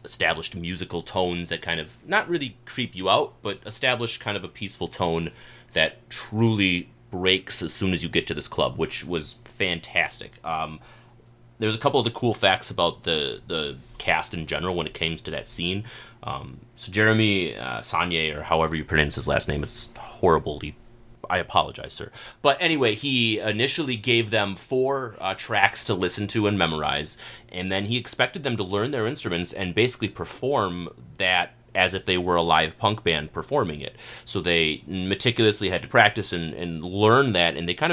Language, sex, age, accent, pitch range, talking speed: English, male, 30-49, American, 85-110 Hz, 190 wpm